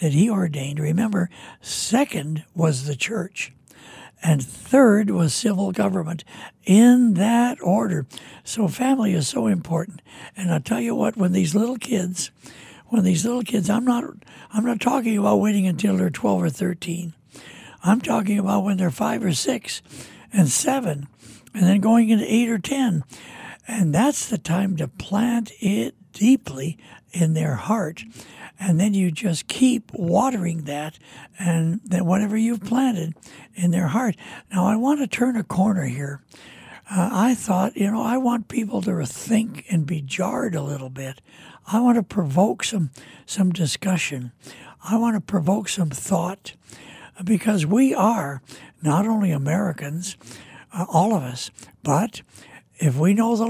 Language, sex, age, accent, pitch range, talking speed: English, male, 60-79, American, 160-220 Hz, 155 wpm